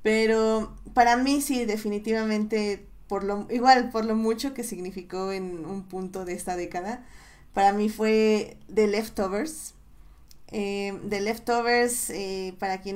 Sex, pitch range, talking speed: female, 200-235 Hz, 130 wpm